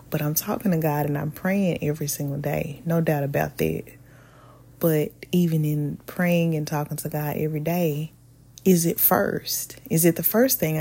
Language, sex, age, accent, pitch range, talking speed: English, female, 20-39, American, 150-185 Hz, 185 wpm